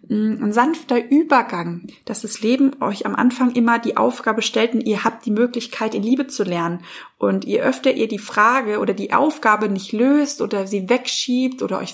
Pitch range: 215-255 Hz